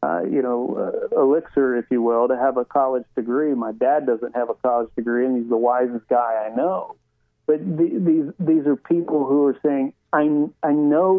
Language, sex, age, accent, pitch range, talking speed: English, male, 40-59, American, 130-160 Hz, 210 wpm